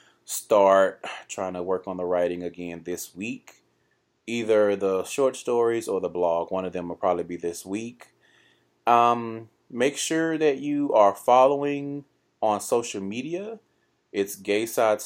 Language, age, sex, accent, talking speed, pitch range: English, 30-49, male, American, 150 wpm, 110-135 Hz